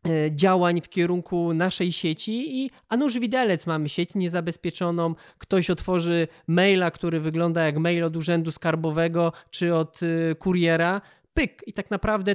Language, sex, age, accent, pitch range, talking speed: Polish, male, 20-39, native, 165-200 Hz, 135 wpm